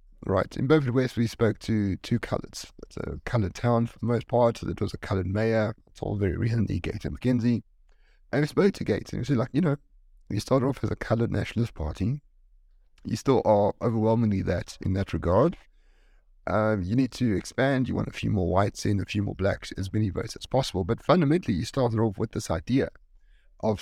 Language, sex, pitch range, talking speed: English, male, 95-120 Hz, 215 wpm